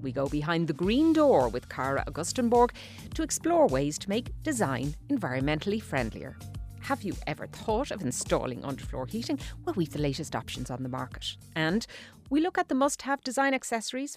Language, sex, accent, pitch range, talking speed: English, female, Irish, 145-220 Hz, 175 wpm